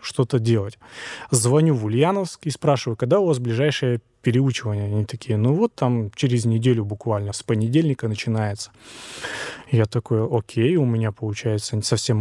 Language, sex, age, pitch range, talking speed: Russian, male, 20-39, 115-145 Hz, 145 wpm